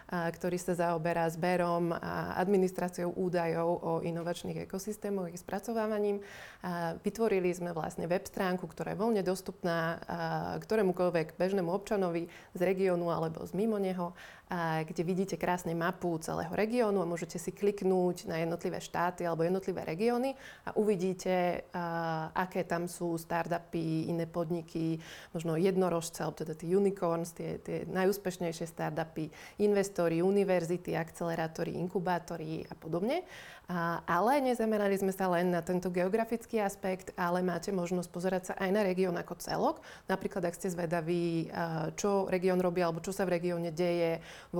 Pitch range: 170-190 Hz